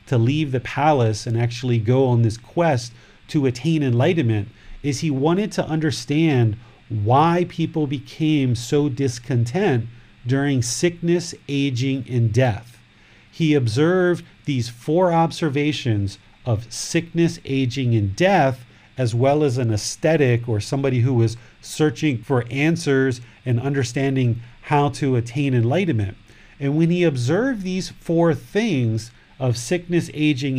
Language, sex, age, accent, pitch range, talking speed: English, male, 40-59, American, 120-150 Hz, 130 wpm